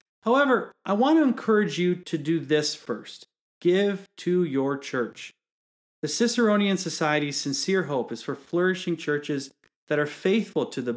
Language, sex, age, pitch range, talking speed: English, male, 30-49, 135-180 Hz, 155 wpm